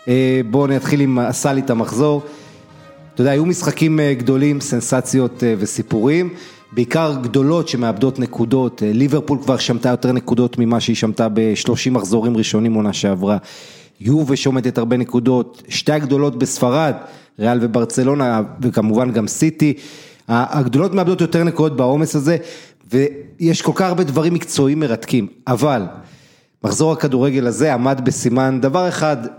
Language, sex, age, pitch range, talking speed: Hebrew, male, 30-49, 120-150 Hz, 135 wpm